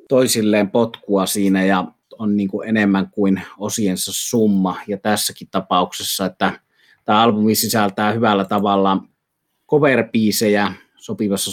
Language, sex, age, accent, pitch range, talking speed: Finnish, male, 30-49, native, 95-105 Hz, 115 wpm